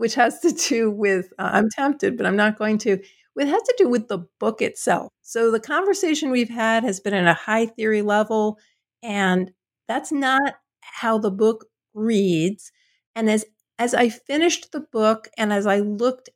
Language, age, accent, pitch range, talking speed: English, 50-69, American, 200-250 Hz, 185 wpm